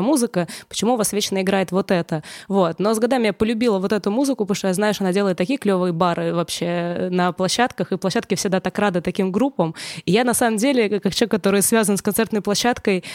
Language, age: Russian, 20-39